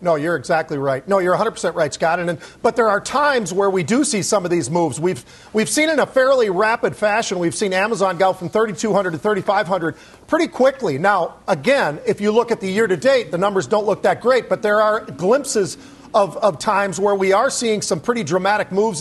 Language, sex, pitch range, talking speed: English, male, 190-225 Hz, 225 wpm